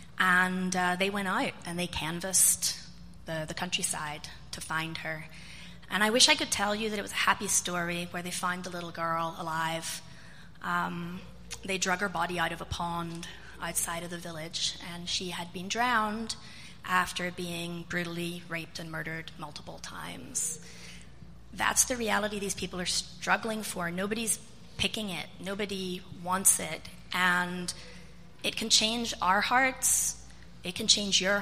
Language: English